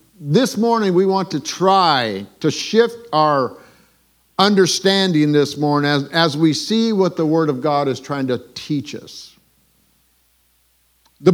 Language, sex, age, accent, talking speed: English, male, 50-69, American, 145 wpm